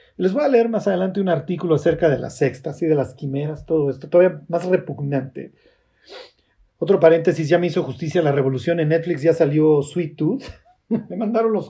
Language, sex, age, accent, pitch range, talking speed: Spanish, male, 40-59, Mexican, 155-220 Hz, 200 wpm